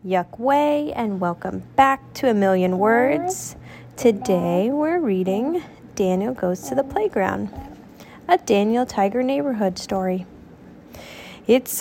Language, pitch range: English, 190-275 Hz